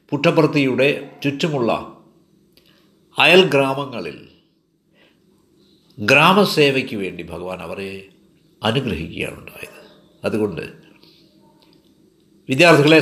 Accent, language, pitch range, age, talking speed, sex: native, Malayalam, 140-180 Hz, 60-79, 55 wpm, male